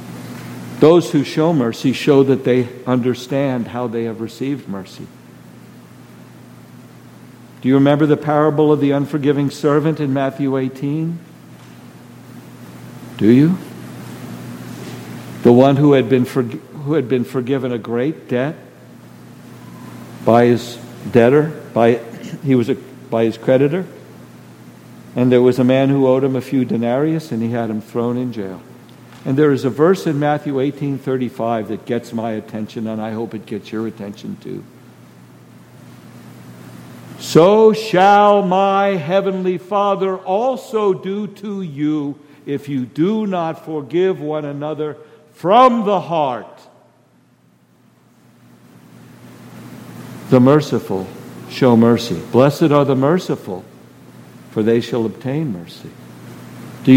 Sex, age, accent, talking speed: male, 60-79, American, 130 wpm